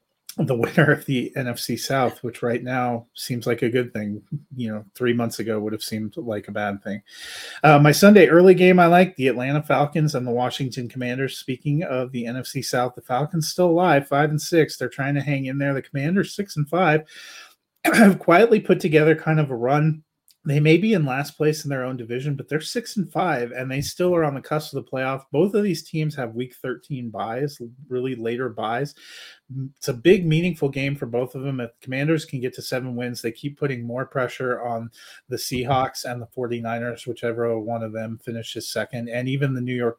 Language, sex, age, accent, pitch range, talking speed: English, male, 30-49, American, 120-150 Hz, 215 wpm